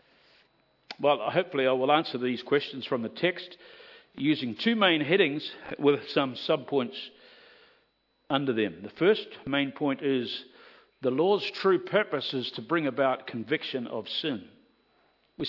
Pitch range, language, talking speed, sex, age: 130-195 Hz, English, 140 wpm, male, 50-69